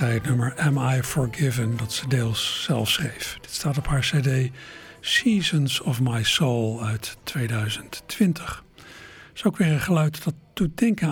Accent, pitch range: Dutch, 130-165 Hz